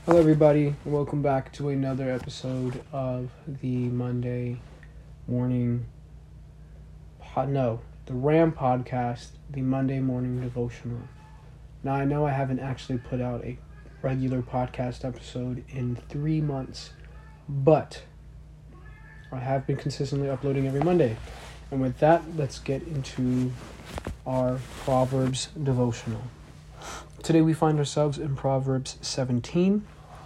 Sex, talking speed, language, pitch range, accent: male, 115 wpm, English, 125-145 Hz, American